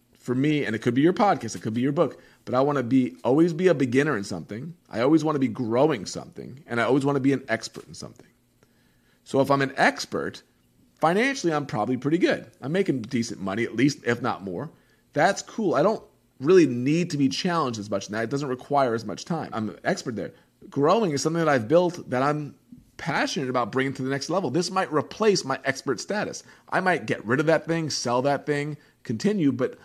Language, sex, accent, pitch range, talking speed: English, male, American, 120-150 Hz, 230 wpm